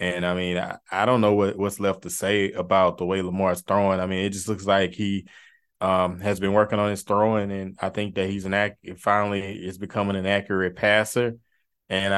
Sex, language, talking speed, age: male, English, 220 wpm, 20-39